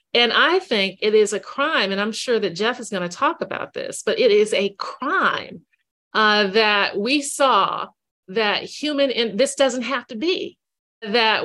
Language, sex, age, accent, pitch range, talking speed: English, female, 40-59, American, 205-280 Hz, 195 wpm